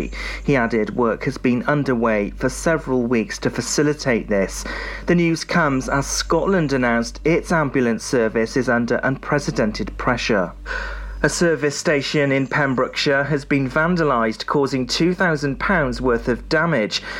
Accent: British